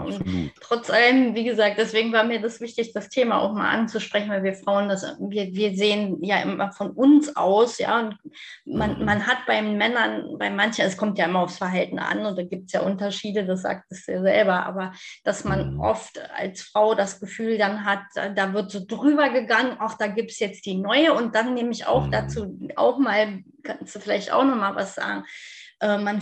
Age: 20-39